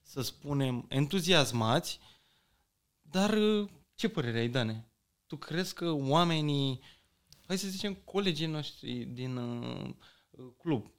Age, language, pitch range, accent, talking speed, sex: 20-39, Romanian, 130-170 Hz, native, 110 wpm, male